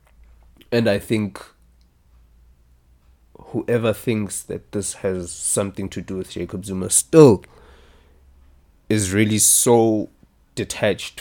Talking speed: 100 wpm